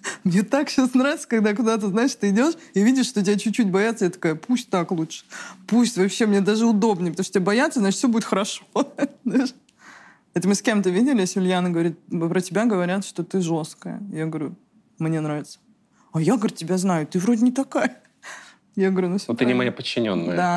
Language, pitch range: Russian, 170-225 Hz